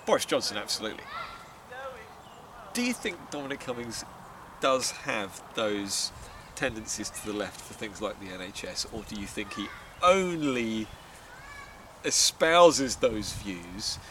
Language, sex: English, male